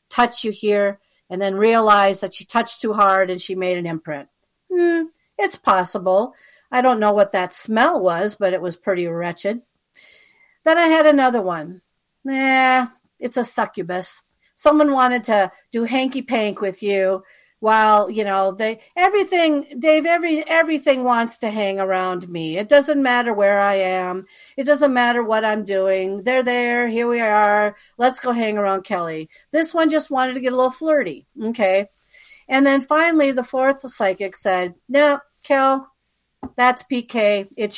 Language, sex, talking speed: English, female, 165 wpm